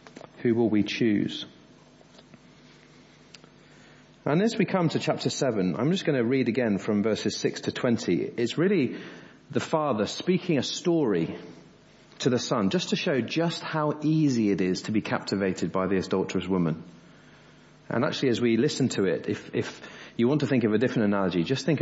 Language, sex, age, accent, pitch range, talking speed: English, male, 40-59, British, 100-145 Hz, 180 wpm